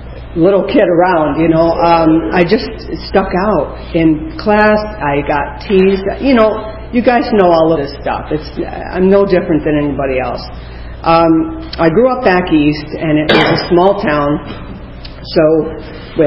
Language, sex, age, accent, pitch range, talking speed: English, female, 50-69, American, 150-180 Hz, 165 wpm